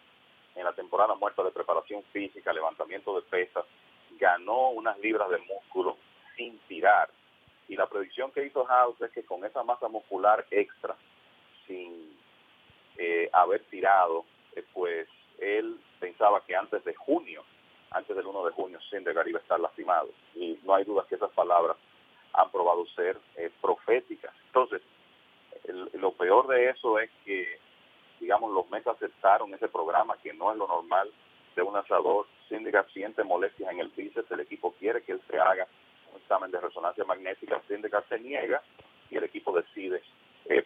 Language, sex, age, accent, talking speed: English, male, 40-59, Venezuelan, 165 wpm